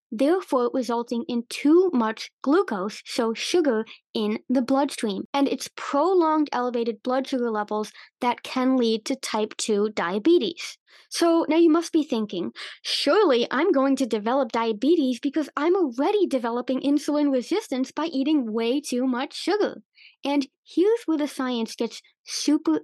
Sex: female